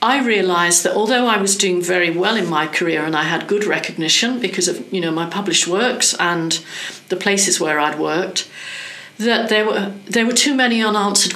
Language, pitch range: English, 170-205 Hz